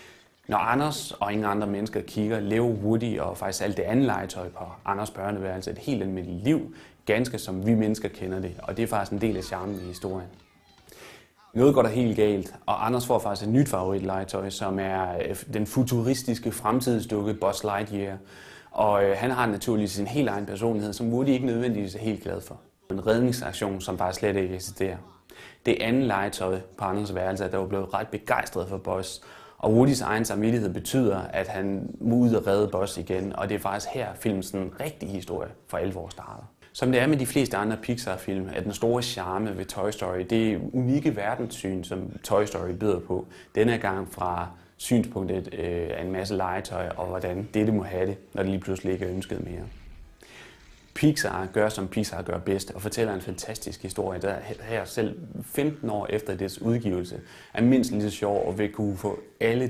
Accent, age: native, 30-49